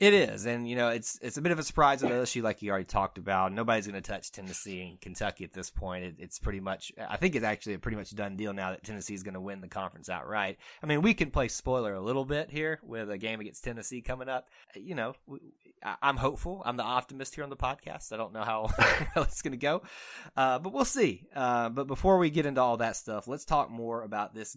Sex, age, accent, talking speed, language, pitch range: male, 20-39, American, 260 wpm, English, 95-120 Hz